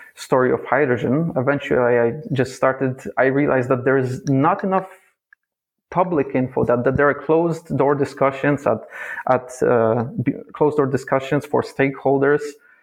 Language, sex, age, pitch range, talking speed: English, male, 30-49, 125-150 Hz, 145 wpm